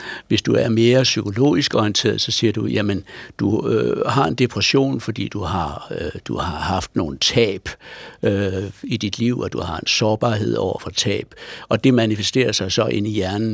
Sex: male